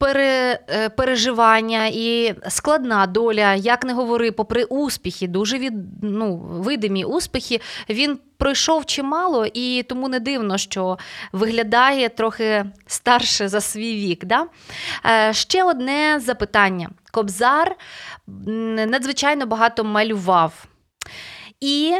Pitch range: 215-275 Hz